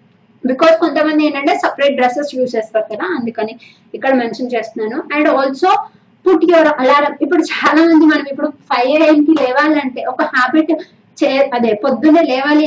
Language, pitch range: Telugu, 260-320 Hz